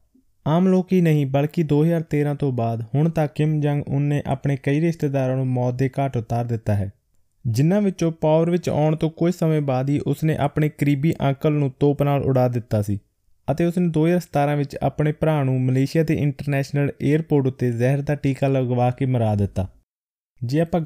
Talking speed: 180 wpm